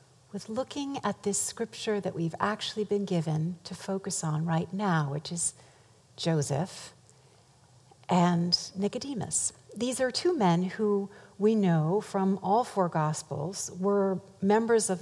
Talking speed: 135 wpm